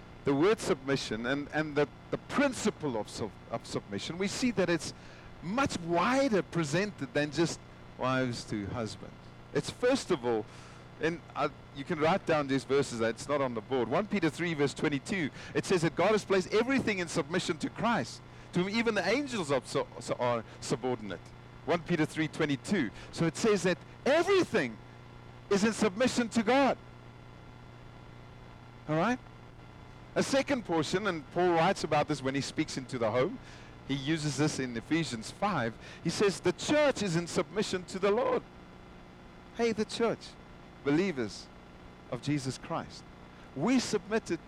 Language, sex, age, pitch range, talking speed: English, male, 50-69, 125-205 Hz, 160 wpm